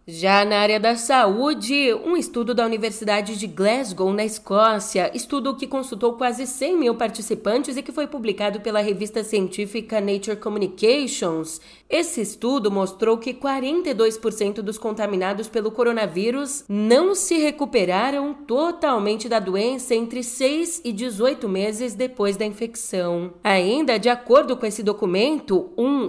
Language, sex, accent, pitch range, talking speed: Portuguese, female, Brazilian, 200-265 Hz, 135 wpm